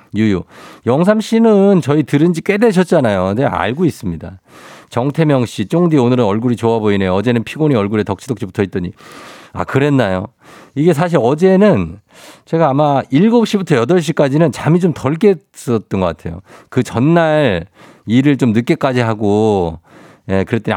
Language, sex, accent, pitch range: Korean, male, native, 100-155 Hz